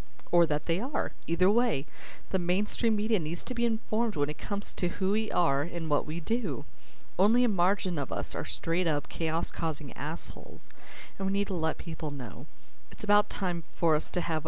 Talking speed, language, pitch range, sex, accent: 195 wpm, English, 155-190 Hz, female, American